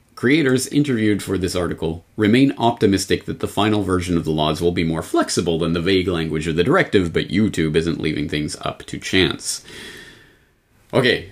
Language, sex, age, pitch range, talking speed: English, male, 30-49, 90-135 Hz, 180 wpm